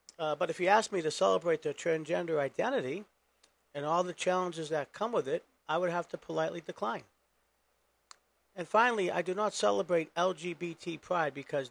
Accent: American